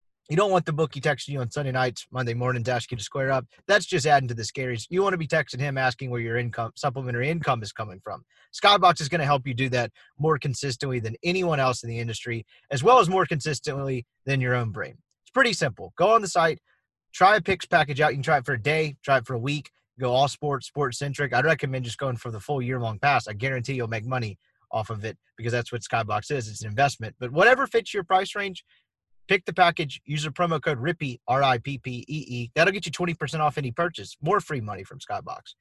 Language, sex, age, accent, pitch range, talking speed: English, male, 30-49, American, 125-160 Hz, 240 wpm